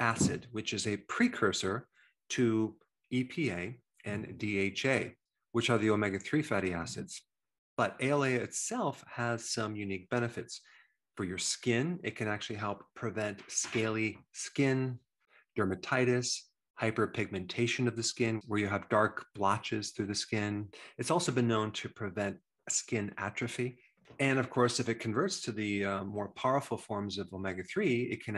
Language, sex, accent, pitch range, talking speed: English, male, American, 100-120 Hz, 145 wpm